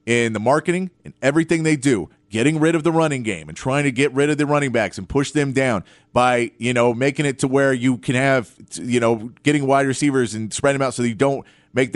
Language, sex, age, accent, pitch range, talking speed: English, male, 30-49, American, 130-190 Hz, 250 wpm